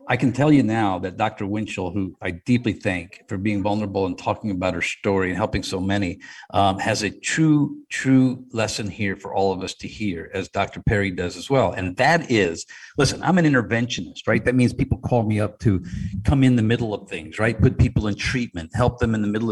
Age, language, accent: 50-69, English, American